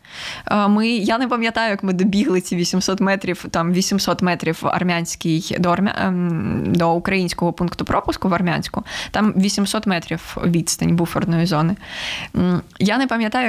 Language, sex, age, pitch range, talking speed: Ukrainian, female, 20-39, 185-220 Hz, 125 wpm